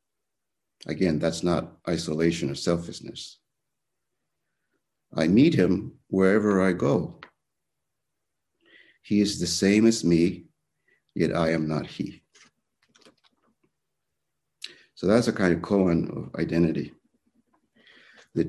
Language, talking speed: English, 105 wpm